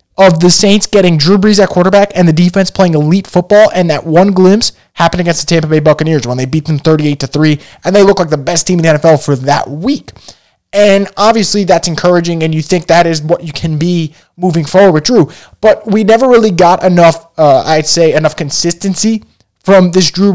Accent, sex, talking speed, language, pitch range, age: American, male, 220 wpm, English, 165-200 Hz, 20-39